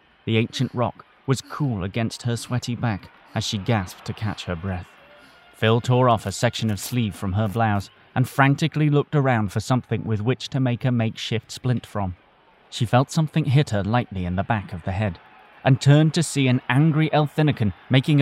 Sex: male